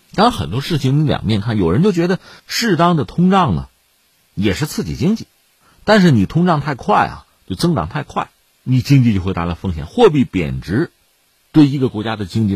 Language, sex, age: Chinese, male, 50-69